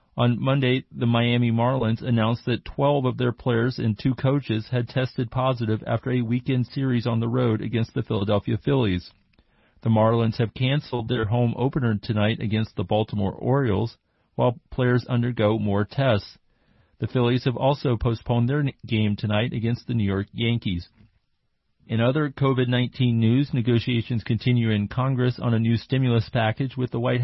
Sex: male